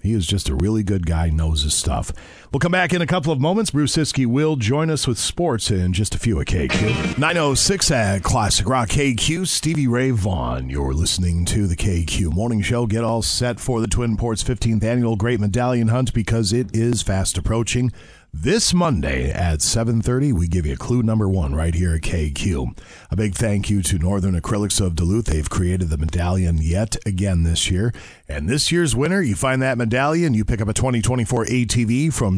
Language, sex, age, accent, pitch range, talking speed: English, male, 40-59, American, 85-125 Hz, 200 wpm